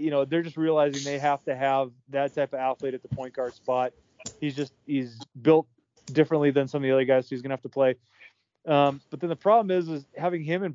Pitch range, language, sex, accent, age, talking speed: 135-165 Hz, English, male, American, 30-49, 255 wpm